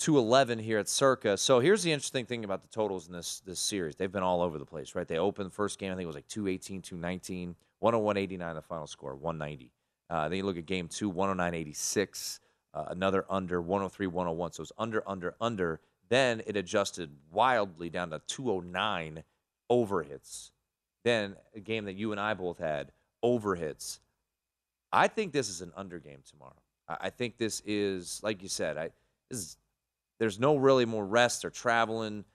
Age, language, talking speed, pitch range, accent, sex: 30-49, English, 190 wpm, 85-110 Hz, American, male